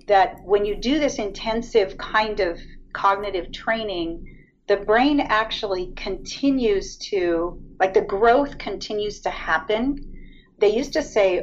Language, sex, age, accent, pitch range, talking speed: English, female, 40-59, American, 175-235 Hz, 130 wpm